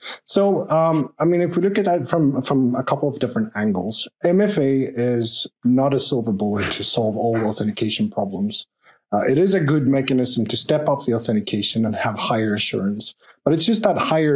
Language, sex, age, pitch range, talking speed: English, male, 30-49, 115-155 Hz, 195 wpm